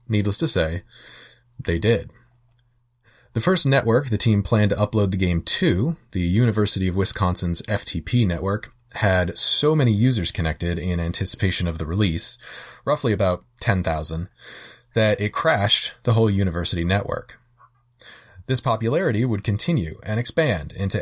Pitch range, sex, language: 90-120 Hz, male, English